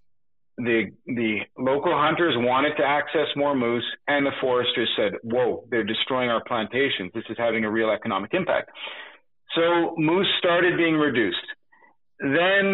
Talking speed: 145 wpm